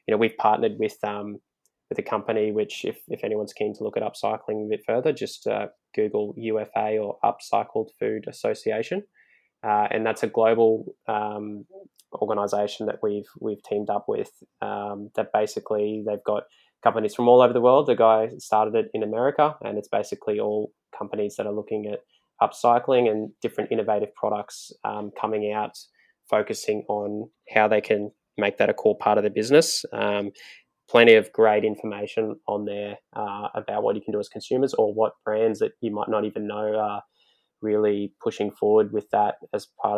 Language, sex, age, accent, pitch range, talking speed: English, male, 10-29, Australian, 105-110 Hz, 180 wpm